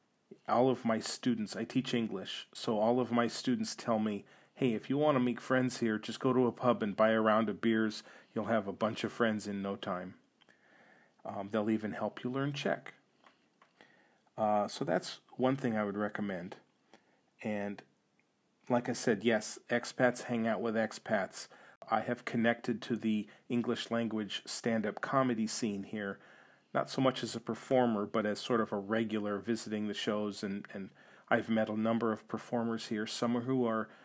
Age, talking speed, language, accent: 40-59, 185 wpm, English, American